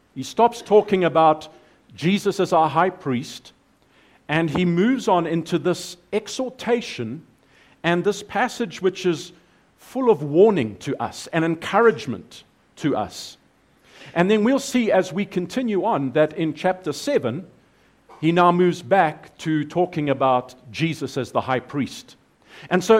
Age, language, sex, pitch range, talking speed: 50-69, English, male, 145-195 Hz, 145 wpm